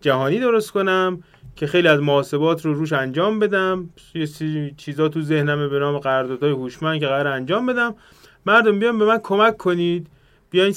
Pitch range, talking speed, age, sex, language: 145-205 Hz, 165 wpm, 30-49, male, Persian